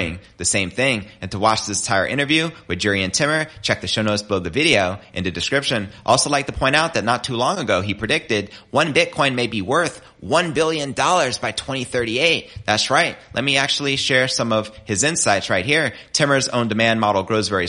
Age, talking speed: 30-49, 210 wpm